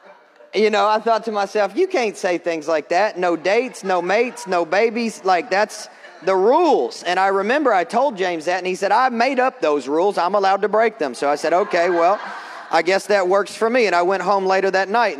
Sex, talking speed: male, 235 wpm